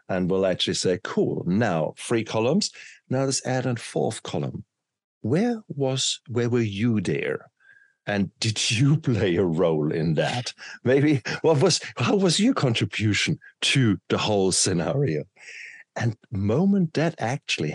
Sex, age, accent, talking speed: male, 60-79, German, 145 wpm